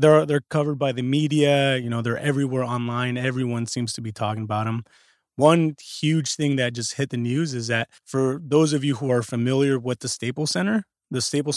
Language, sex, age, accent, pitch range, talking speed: English, male, 20-39, American, 115-145 Hz, 215 wpm